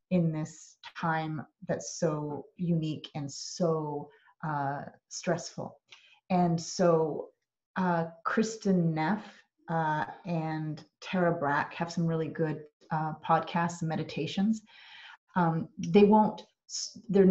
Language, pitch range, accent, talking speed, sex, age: English, 160-185 Hz, American, 105 wpm, female, 30-49